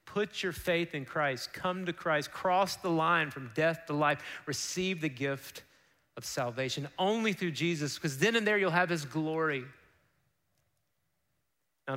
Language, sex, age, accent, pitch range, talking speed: English, male, 30-49, American, 135-175 Hz, 160 wpm